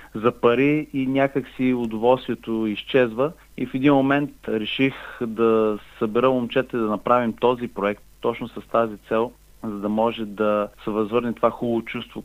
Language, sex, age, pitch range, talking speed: Bulgarian, male, 40-59, 110-140 Hz, 155 wpm